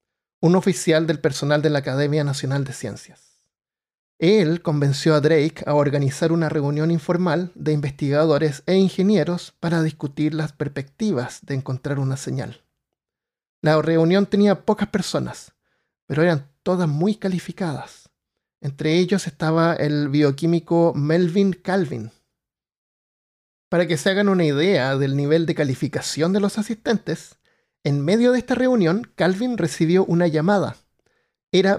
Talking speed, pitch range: 135 wpm, 150-185 Hz